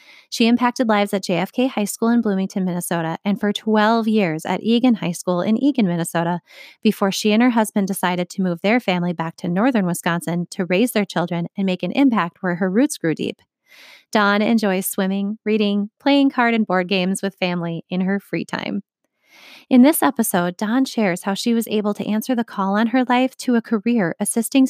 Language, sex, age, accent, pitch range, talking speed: English, female, 20-39, American, 185-230 Hz, 200 wpm